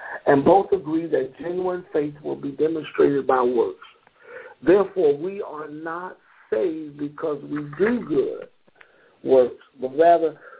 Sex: male